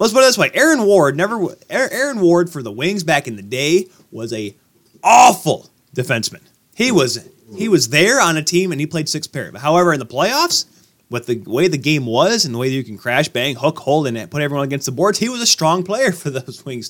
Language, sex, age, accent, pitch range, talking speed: English, male, 20-39, American, 125-175 Hz, 225 wpm